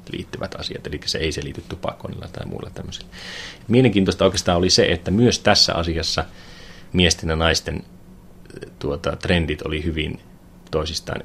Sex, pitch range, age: male, 80-95 Hz, 30-49